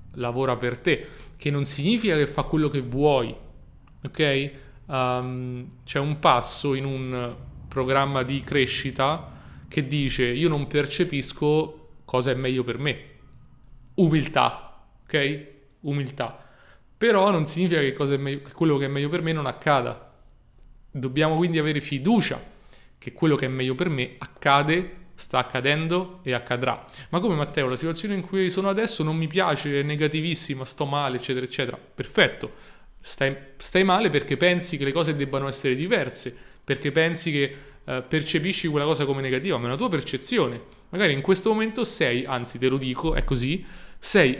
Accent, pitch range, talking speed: native, 130-160 Hz, 165 wpm